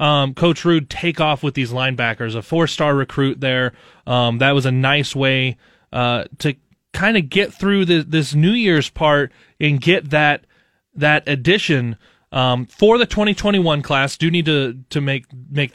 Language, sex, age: English, male, 20-39